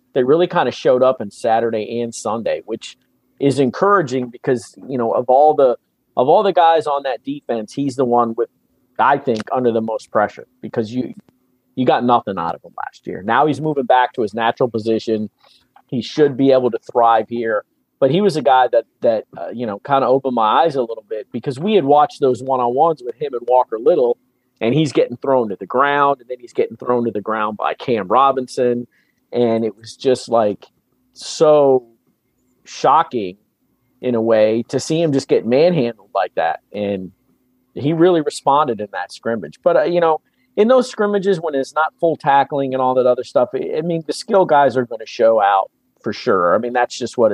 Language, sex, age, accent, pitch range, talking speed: English, male, 40-59, American, 115-150 Hz, 215 wpm